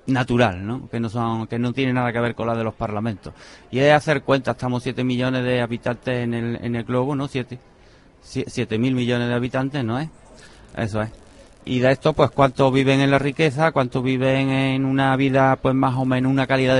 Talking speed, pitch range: 215 wpm, 120-140 Hz